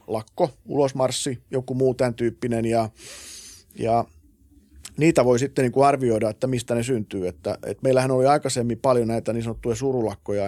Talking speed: 155 wpm